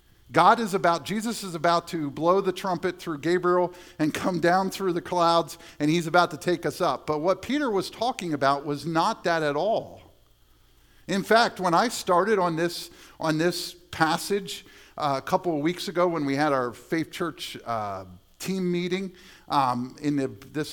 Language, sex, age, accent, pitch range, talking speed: English, male, 50-69, American, 155-200 Hz, 190 wpm